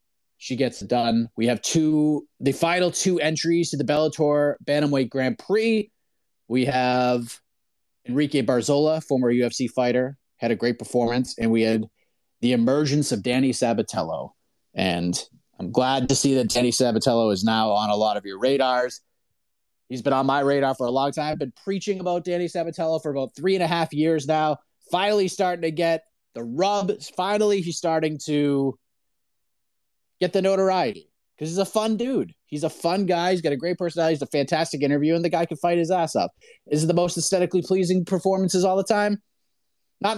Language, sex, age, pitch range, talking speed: English, male, 30-49, 130-175 Hz, 185 wpm